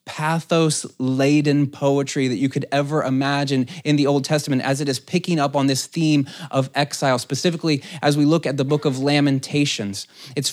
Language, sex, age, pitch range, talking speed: English, male, 20-39, 135-155 Hz, 175 wpm